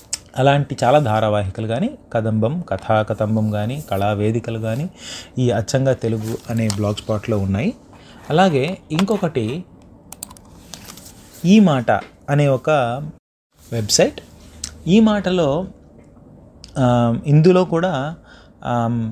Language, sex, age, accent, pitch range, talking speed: English, male, 30-49, Indian, 110-145 Hz, 80 wpm